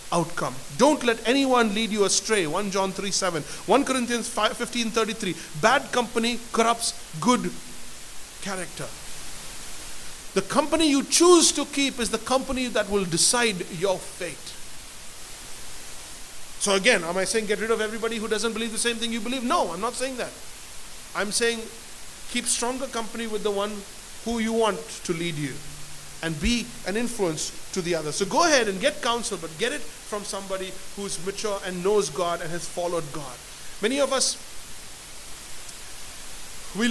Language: English